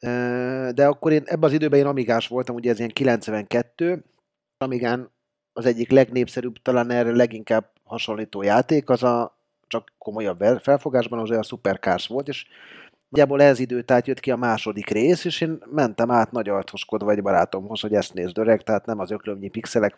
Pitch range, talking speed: 105-125 Hz, 170 wpm